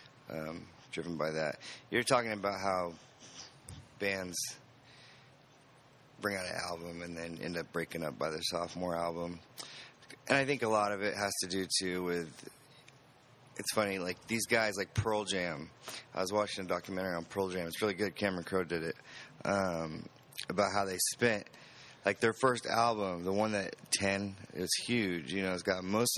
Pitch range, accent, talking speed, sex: 90-120 Hz, American, 180 wpm, male